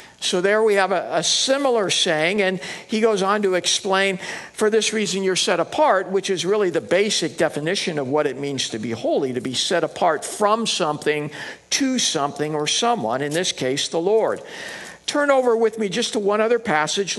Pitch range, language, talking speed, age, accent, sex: 165-225 Hz, English, 200 wpm, 50-69, American, male